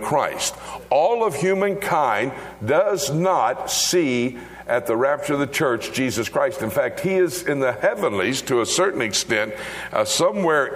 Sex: male